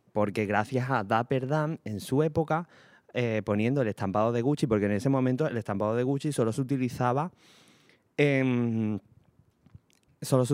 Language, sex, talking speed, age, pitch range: Spanish, male, 160 wpm, 20-39, 105-140 Hz